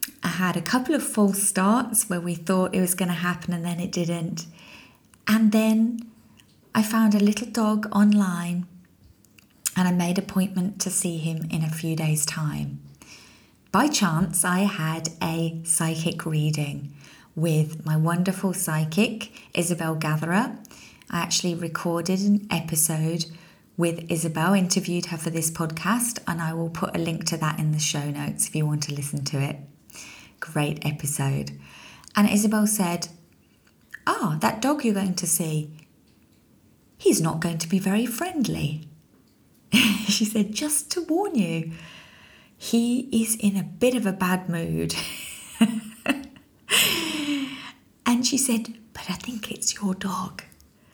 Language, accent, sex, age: English, British, female, 30-49